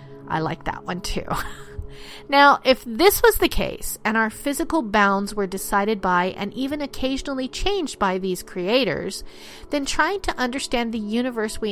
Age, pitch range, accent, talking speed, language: 40-59, 185-260 Hz, American, 165 wpm, English